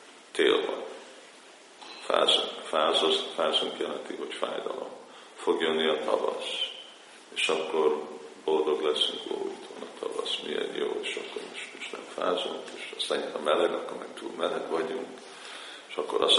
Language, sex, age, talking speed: Hungarian, male, 50-69, 145 wpm